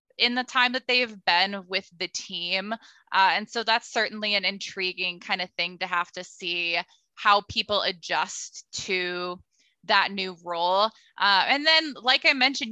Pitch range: 185-230 Hz